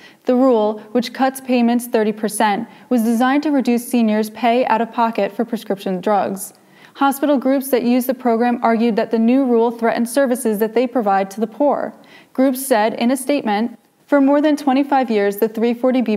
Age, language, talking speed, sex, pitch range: 20-39, English, 175 wpm, female, 210-255 Hz